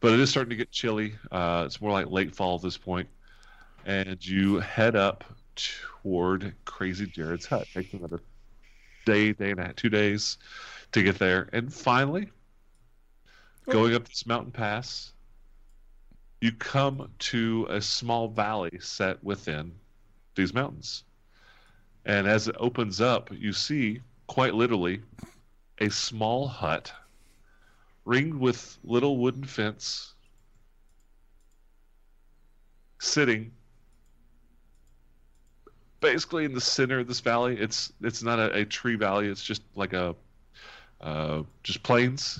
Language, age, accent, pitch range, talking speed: English, 30-49, American, 90-115 Hz, 130 wpm